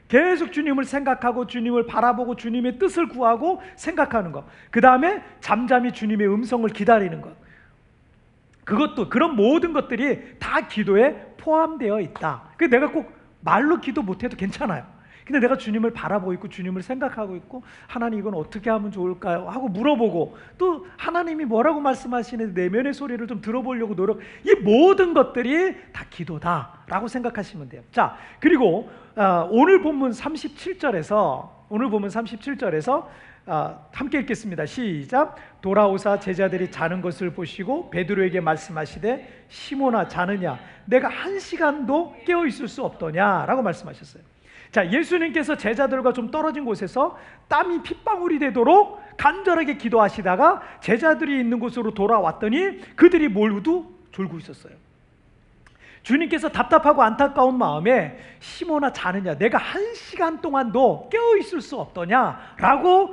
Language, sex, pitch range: Korean, male, 210-305 Hz